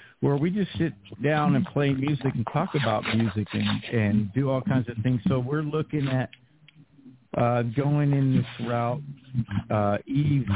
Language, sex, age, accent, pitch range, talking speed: English, male, 50-69, American, 105-135 Hz, 170 wpm